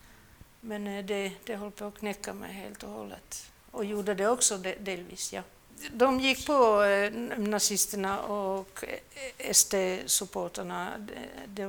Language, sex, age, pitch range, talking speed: Swedish, female, 60-79, 180-210 Hz, 125 wpm